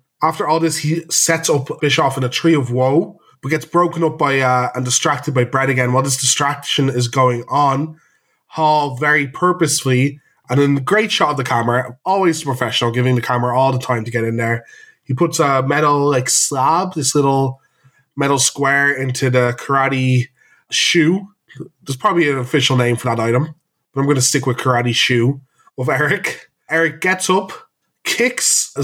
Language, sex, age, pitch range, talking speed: English, male, 20-39, 130-165 Hz, 185 wpm